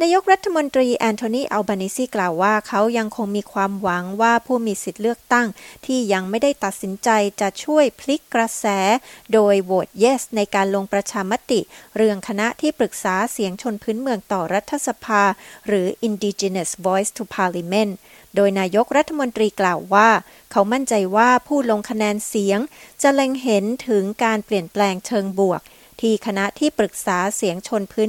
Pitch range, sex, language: 195-235 Hz, female, Thai